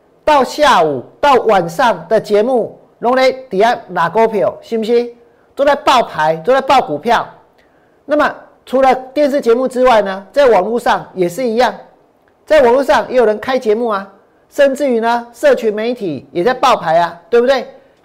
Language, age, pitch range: Chinese, 50-69, 215-275 Hz